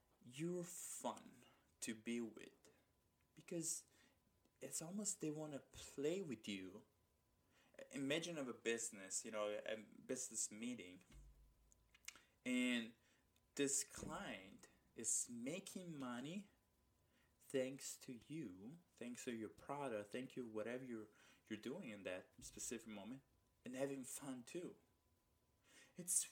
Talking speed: 115 wpm